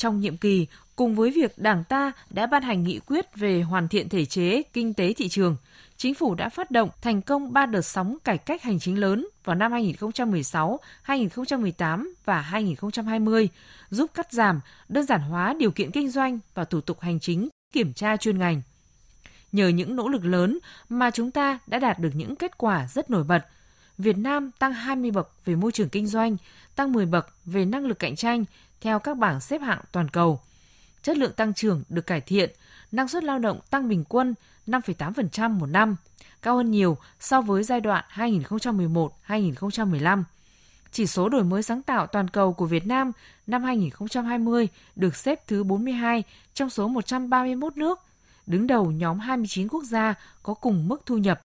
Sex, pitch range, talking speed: female, 185-250 Hz, 185 wpm